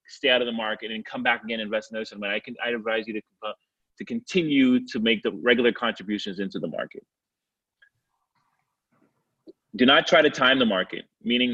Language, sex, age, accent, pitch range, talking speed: English, male, 30-49, American, 105-130 Hz, 200 wpm